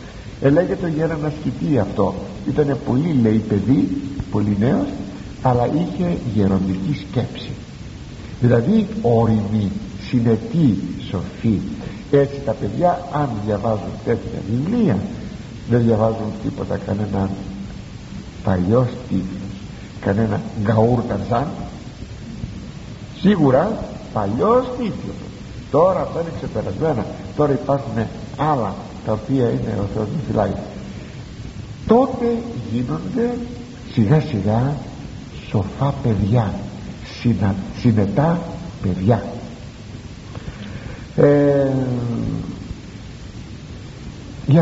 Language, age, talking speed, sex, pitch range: Greek, 60-79, 80 wpm, male, 105-140 Hz